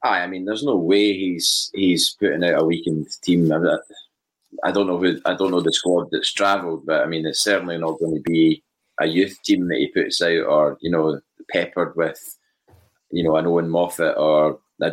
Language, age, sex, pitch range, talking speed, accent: English, 20-39, male, 85-100 Hz, 215 wpm, British